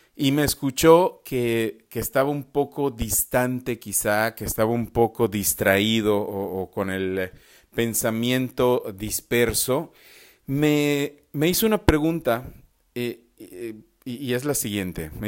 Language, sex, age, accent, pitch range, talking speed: English, male, 40-59, Mexican, 100-140 Hz, 130 wpm